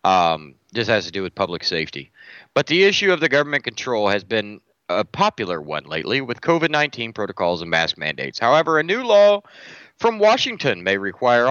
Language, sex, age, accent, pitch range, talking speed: English, male, 30-49, American, 100-150 Hz, 185 wpm